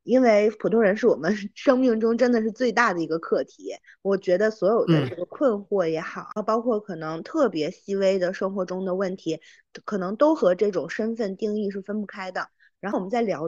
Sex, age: female, 20-39